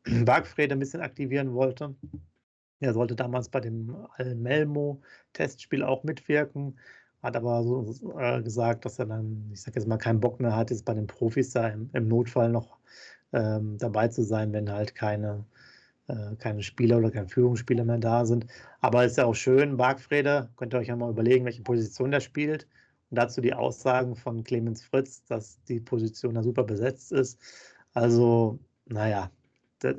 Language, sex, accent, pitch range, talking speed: German, male, German, 115-130 Hz, 170 wpm